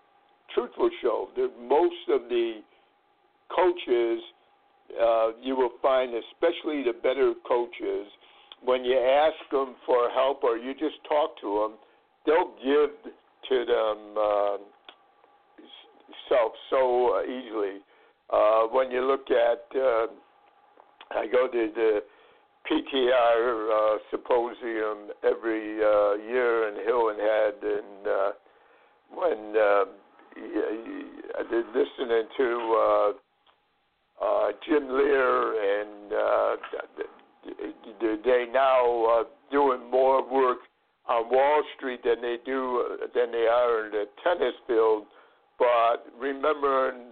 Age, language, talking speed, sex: 60-79, English, 115 wpm, male